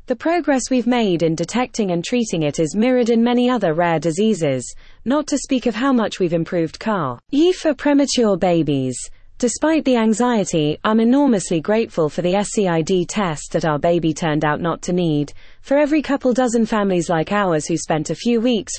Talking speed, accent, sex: 190 wpm, British, female